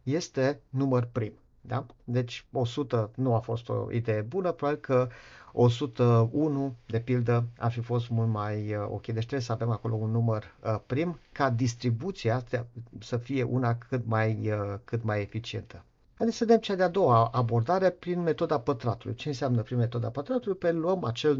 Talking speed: 170 wpm